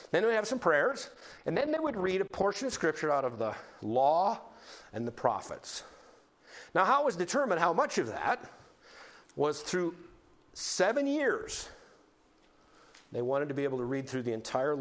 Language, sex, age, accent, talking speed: English, male, 50-69, American, 180 wpm